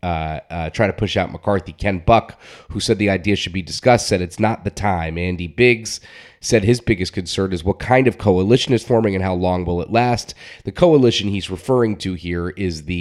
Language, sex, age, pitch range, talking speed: English, male, 30-49, 90-110 Hz, 220 wpm